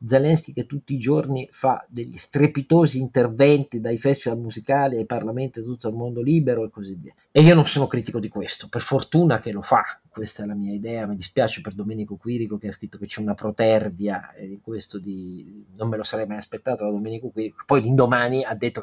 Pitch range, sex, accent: 110-150 Hz, male, native